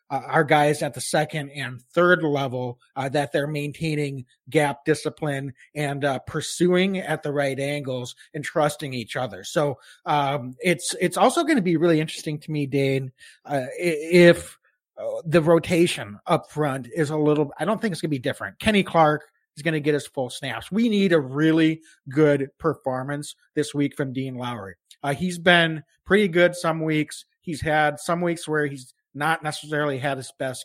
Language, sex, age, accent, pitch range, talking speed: English, male, 30-49, American, 135-160 Hz, 185 wpm